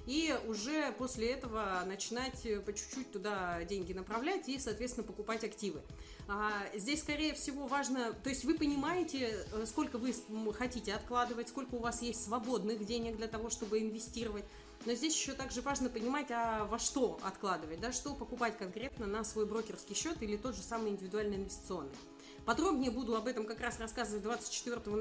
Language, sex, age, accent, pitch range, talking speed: Russian, female, 30-49, native, 210-255 Hz, 165 wpm